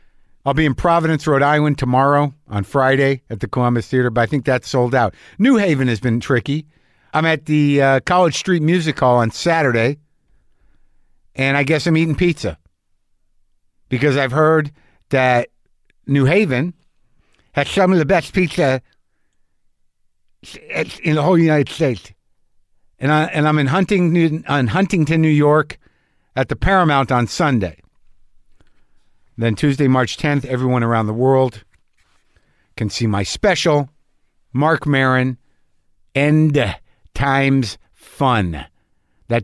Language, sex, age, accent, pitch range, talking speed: English, male, 50-69, American, 100-150 Hz, 130 wpm